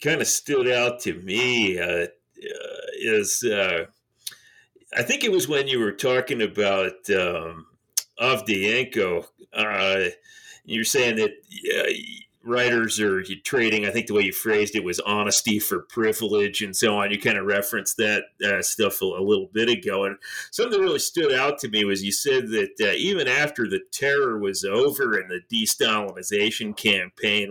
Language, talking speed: English, 170 wpm